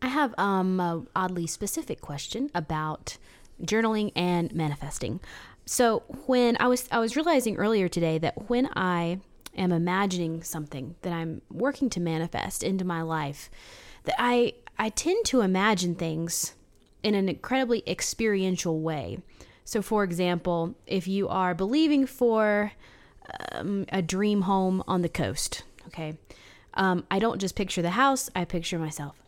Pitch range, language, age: 170-225 Hz, English, 20-39